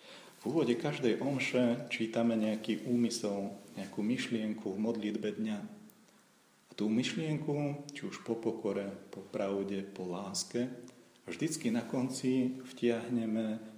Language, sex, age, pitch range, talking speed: Slovak, male, 40-59, 105-120 Hz, 120 wpm